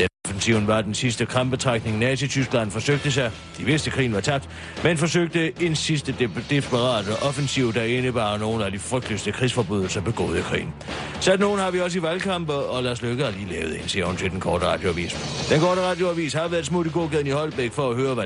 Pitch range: 110-155 Hz